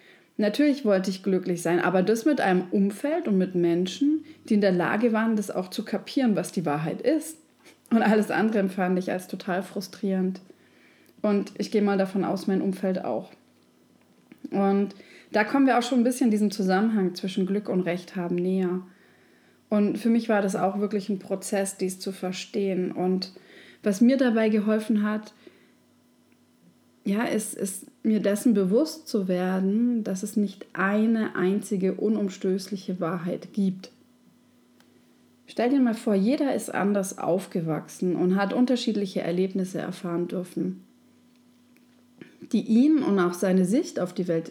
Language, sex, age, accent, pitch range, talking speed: German, female, 20-39, German, 185-240 Hz, 155 wpm